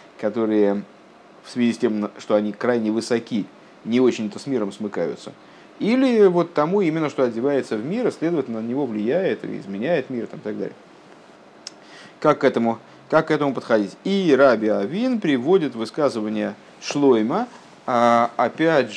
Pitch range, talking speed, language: 110-145 Hz, 155 wpm, Russian